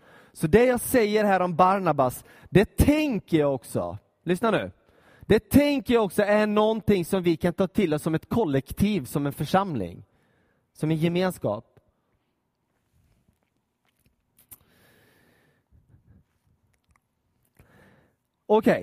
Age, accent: 30-49, native